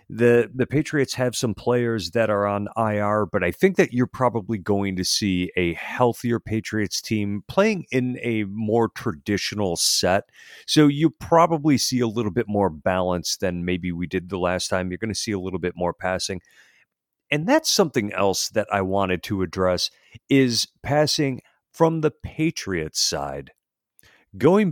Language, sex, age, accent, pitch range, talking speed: English, male, 40-59, American, 95-130 Hz, 170 wpm